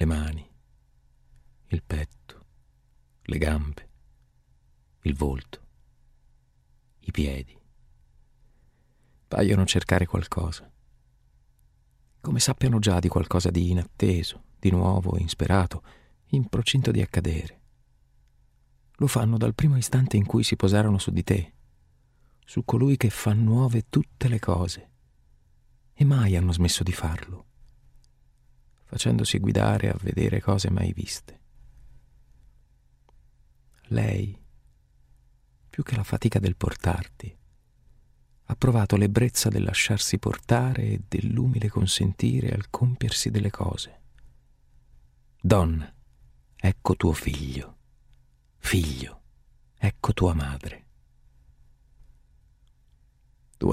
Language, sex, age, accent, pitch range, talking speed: Italian, male, 40-59, native, 65-105 Hz, 100 wpm